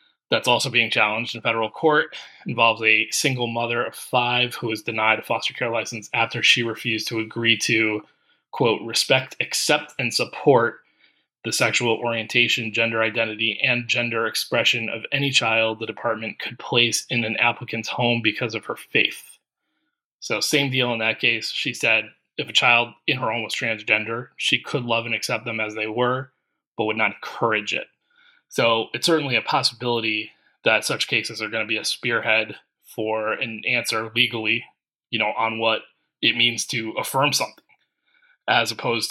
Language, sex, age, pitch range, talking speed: English, male, 20-39, 110-125 Hz, 175 wpm